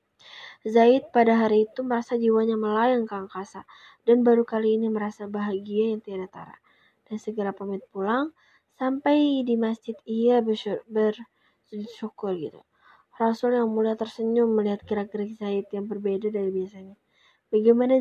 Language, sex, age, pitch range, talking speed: Indonesian, female, 20-39, 210-240 Hz, 135 wpm